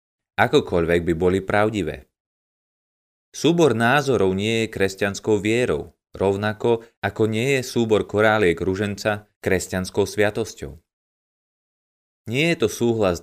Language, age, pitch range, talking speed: Slovak, 20-39, 95-115 Hz, 110 wpm